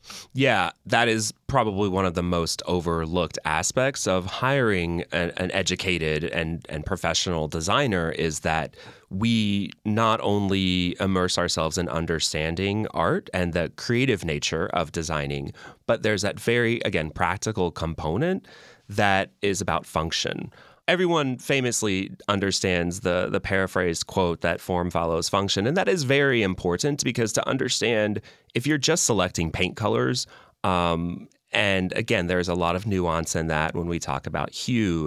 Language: English